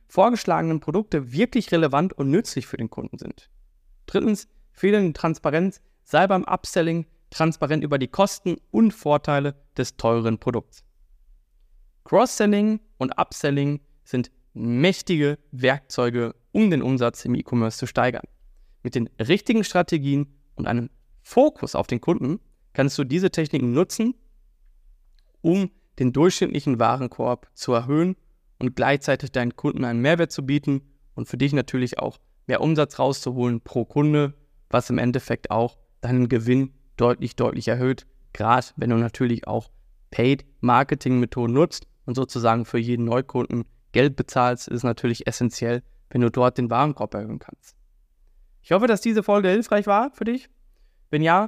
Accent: German